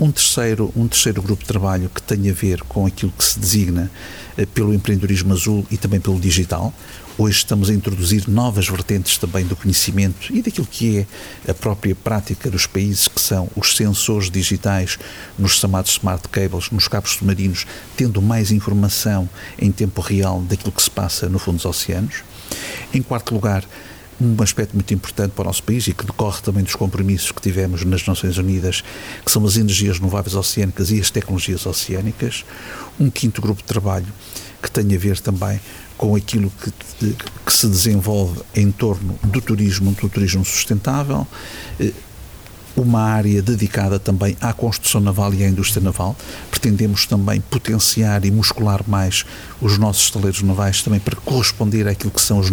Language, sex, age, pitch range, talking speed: Portuguese, male, 50-69, 95-105 Hz, 170 wpm